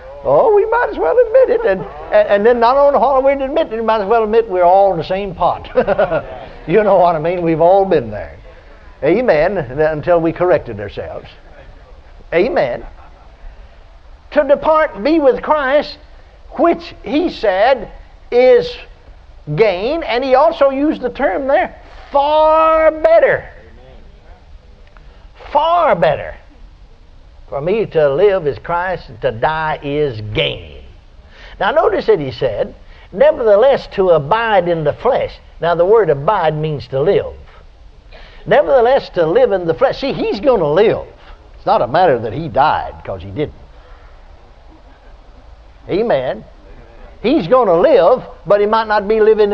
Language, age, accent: English, 60-79, American